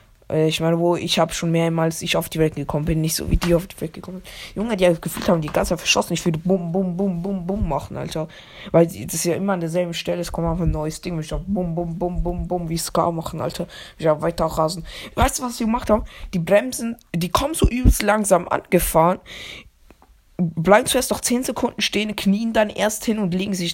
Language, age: German, 20-39